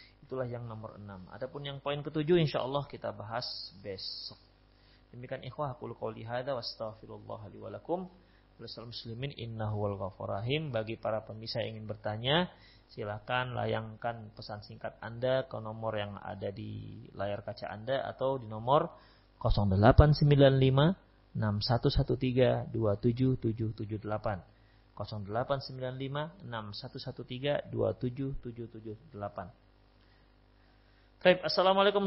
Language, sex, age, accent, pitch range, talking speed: Indonesian, male, 30-49, native, 110-140 Hz, 85 wpm